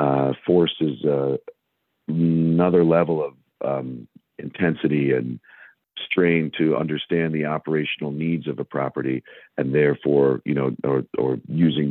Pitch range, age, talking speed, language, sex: 65-80 Hz, 50-69, 125 wpm, English, male